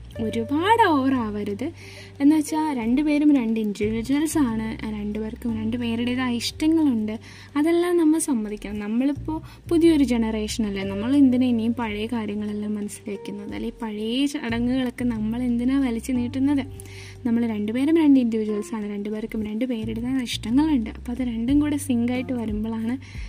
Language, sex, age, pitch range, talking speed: Malayalam, female, 20-39, 220-280 Hz, 110 wpm